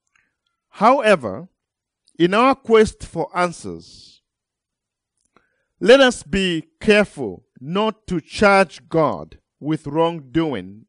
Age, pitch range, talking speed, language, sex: 50-69, 125-200 Hz, 90 wpm, English, male